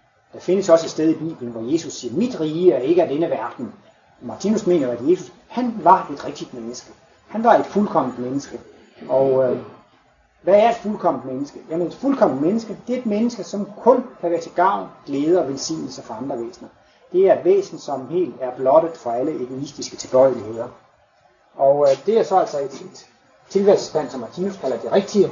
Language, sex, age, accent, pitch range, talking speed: Danish, male, 30-49, native, 140-210 Hz, 200 wpm